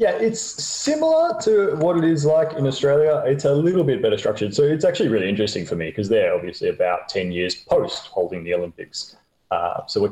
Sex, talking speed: male, 215 wpm